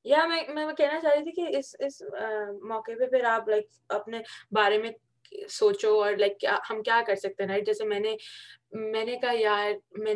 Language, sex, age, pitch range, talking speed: Urdu, female, 20-39, 200-270 Hz, 190 wpm